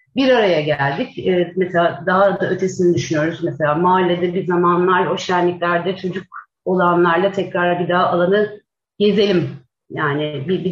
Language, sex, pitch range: Turkish, female, 180-255 Hz